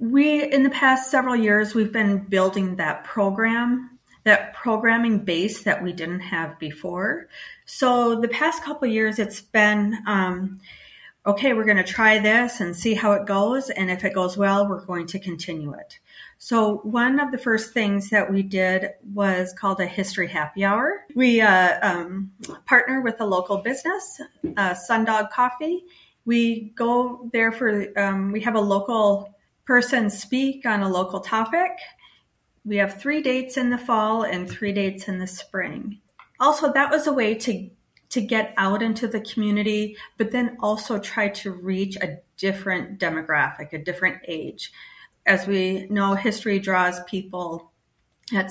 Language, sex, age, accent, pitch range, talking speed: English, female, 40-59, American, 190-235 Hz, 165 wpm